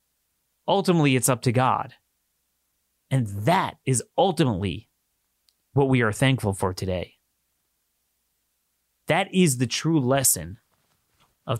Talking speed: 110 wpm